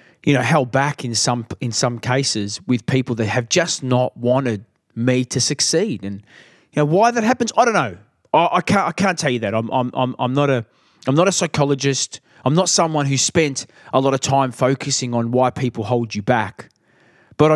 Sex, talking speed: male, 215 wpm